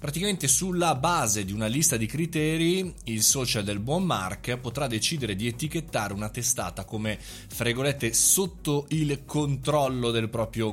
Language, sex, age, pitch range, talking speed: Italian, male, 20-39, 105-140 Hz, 145 wpm